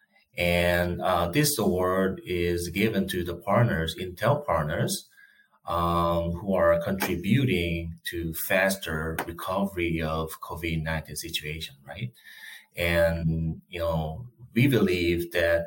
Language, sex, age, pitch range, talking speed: English, male, 30-49, 80-95 Hz, 105 wpm